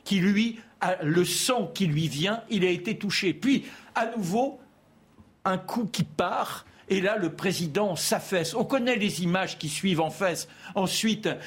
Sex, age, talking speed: male, 60-79, 165 wpm